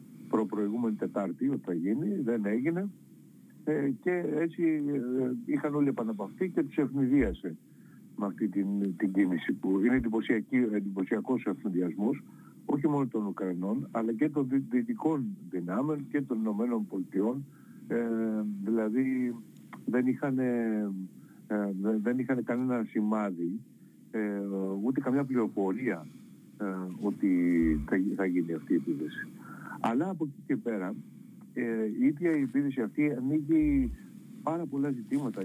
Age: 60-79